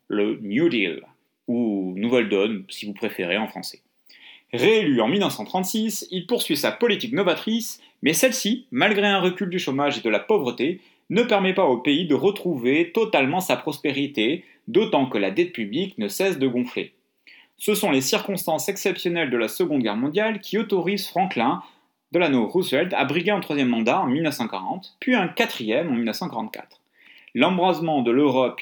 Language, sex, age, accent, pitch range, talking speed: French, male, 30-49, French, 135-200 Hz, 165 wpm